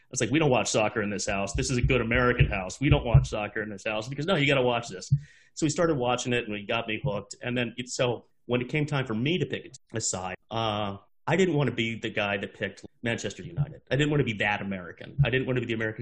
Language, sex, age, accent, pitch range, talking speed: English, male, 30-49, American, 105-135 Hz, 295 wpm